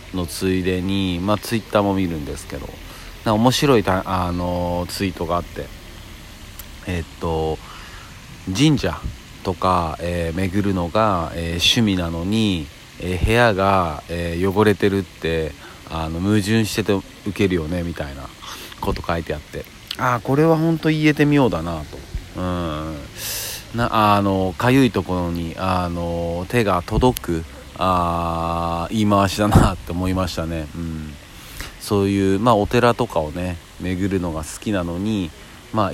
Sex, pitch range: male, 85-105 Hz